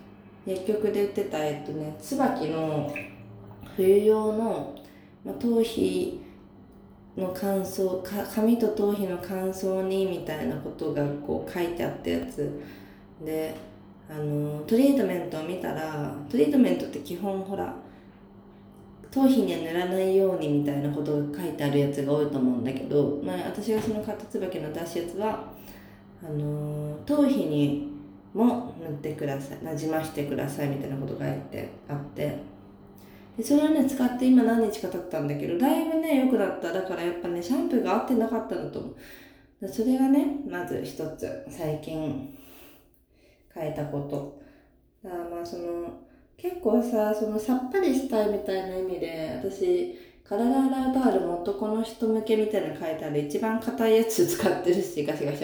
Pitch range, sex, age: 145-220 Hz, female, 20-39